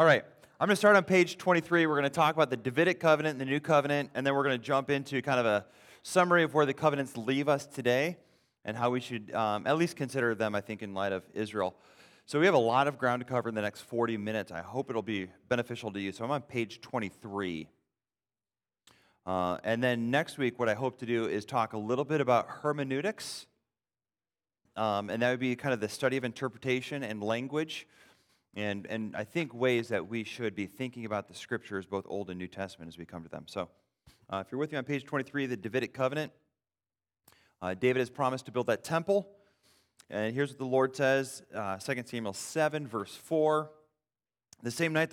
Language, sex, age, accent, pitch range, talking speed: English, male, 30-49, American, 110-150 Hz, 225 wpm